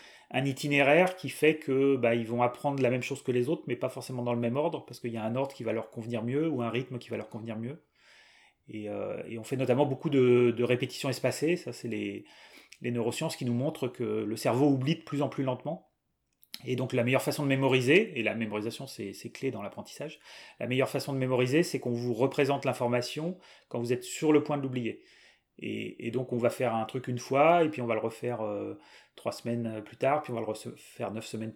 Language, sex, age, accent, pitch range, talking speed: French, male, 30-49, French, 115-140 Hz, 245 wpm